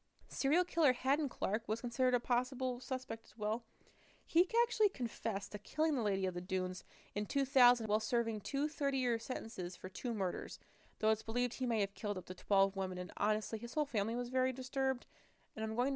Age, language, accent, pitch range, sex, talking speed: 20-39, English, American, 195-250 Hz, female, 200 wpm